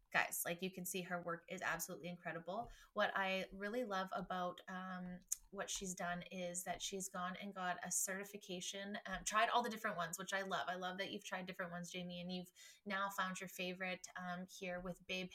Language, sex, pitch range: English, female, 180-195 Hz